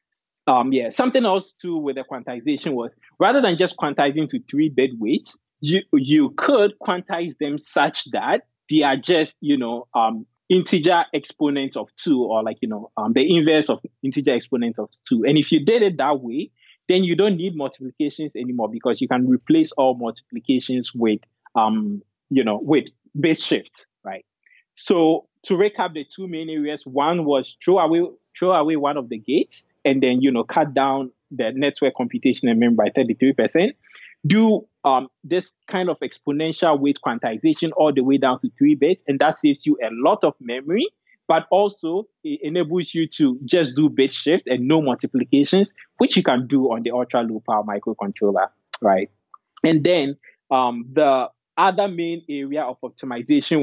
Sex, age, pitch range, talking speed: male, 20-39, 130-190 Hz, 175 wpm